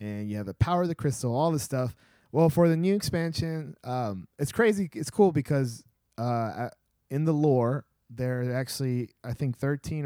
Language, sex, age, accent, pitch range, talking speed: English, male, 20-39, American, 120-155 Hz, 190 wpm